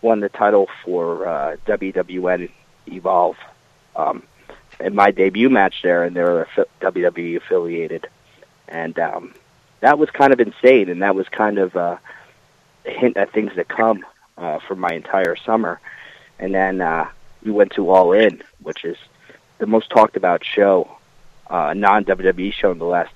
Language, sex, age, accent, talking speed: English, male, 30-49, American, 165 wpm